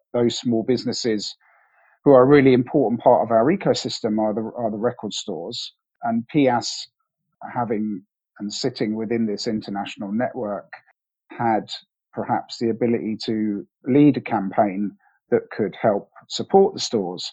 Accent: British